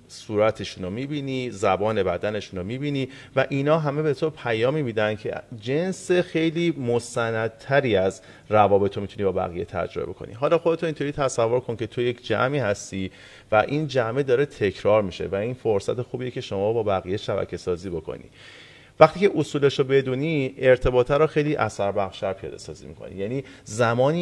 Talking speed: 165 wpm